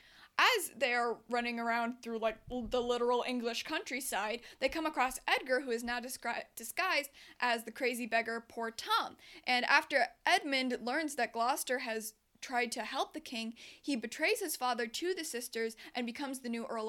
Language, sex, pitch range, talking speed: English, female, 235-305 Hz, 175 wpm